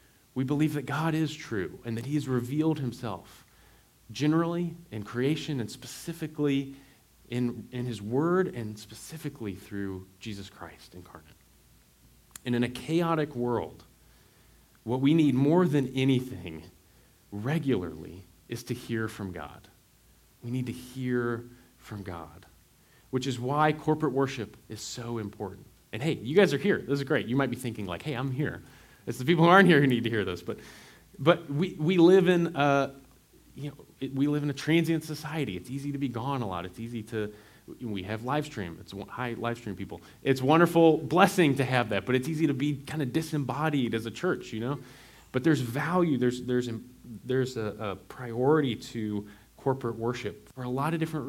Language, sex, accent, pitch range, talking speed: English, male, American, 110-145 Hz, 185 wpm